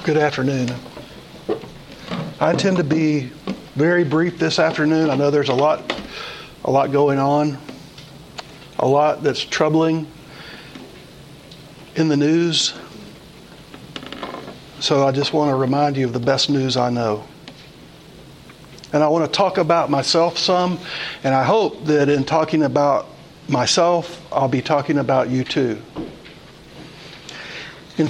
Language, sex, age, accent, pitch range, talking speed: English, male, 60-79, American, 140-170 Hz, 130 wpm